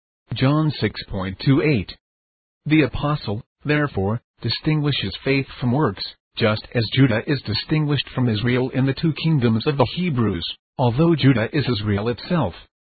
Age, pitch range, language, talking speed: 50-69, 105-140 Hz, English, 130 wpm